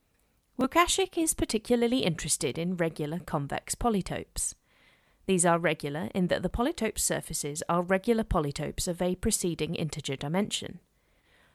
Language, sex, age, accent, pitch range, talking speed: English, female, 30-49, British, 160-205 Hz, 125 wpm